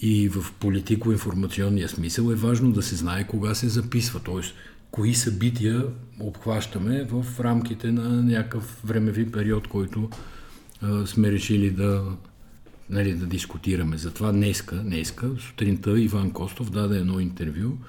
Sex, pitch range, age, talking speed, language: male, 100-120 Hz, 50-69, 130 wpm, Bulgarian